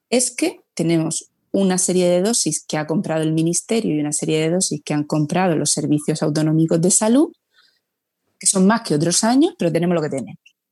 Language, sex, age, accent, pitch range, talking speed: Spanish, female, 30-49, Spanish, 155-185 Hz, 200 wpm